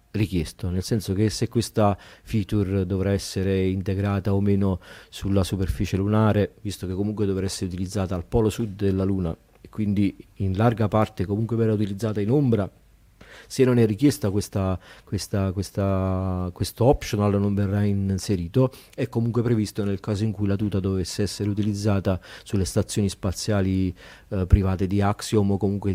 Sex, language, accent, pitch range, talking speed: male, Italian, native, 90-105 Hz, 160 wpm